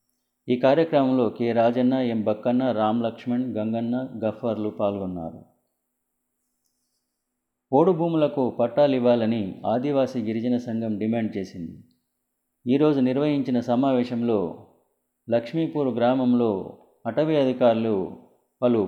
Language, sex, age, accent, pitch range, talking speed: Telugu, male, 30-49, native, 105-130 Hz, 90 wpm